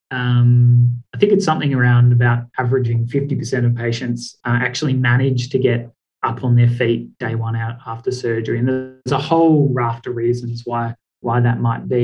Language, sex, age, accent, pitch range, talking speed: English, male, 20-39, Australian, 120-140 Hz, 185 wpm